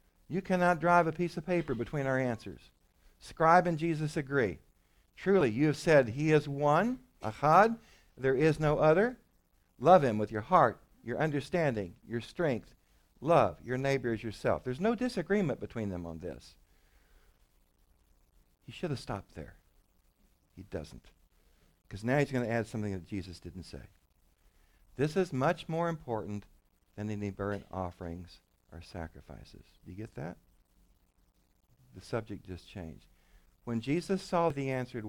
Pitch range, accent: 80-130 Hz, American